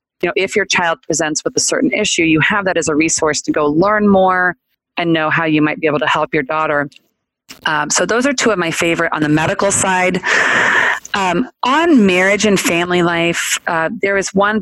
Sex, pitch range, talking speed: female, 155-195 Hz, 220 wpm